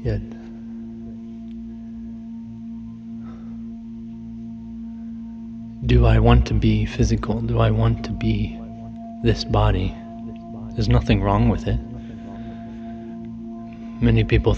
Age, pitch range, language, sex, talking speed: 20-39, 110-115 Hz, English, male, 85 wpm